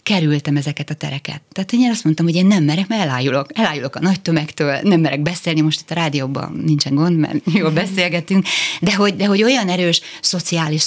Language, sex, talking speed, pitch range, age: Hungarian, female, 205 wpm, 155-180 Hz, 30-49